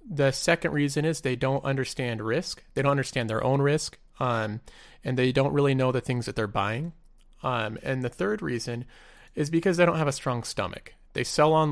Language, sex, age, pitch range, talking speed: English, male, 30-49, 120-150 Hz, 210 wpm